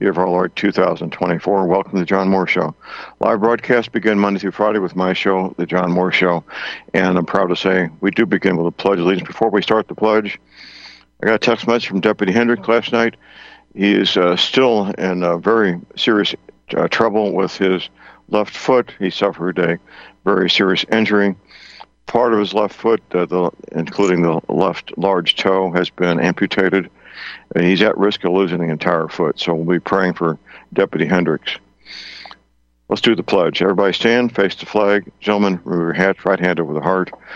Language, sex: English, male